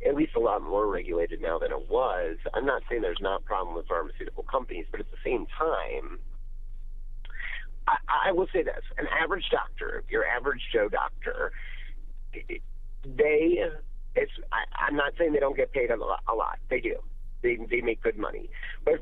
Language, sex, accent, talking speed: English, male, American, 185 wpm